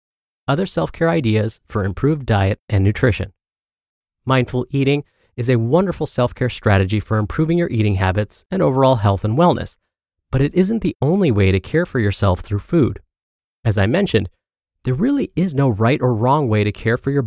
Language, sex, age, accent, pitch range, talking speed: English, male, 30-49, American, 105-150 Hz, 180 wpm